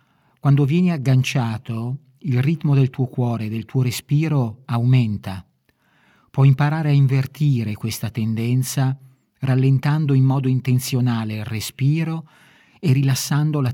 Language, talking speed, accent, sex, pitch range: Italian, 120 wpm, native, male, 115-140 Hz